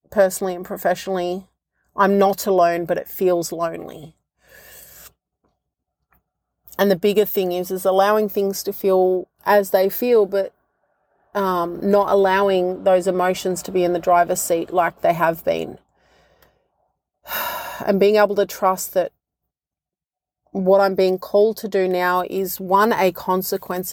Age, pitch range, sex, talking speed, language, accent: 30-49, 180-195 Hz, female, 140 wpm, English, Australian